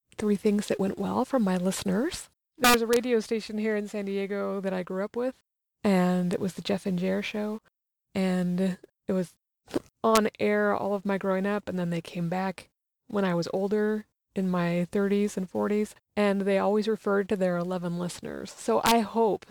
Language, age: English, 20-39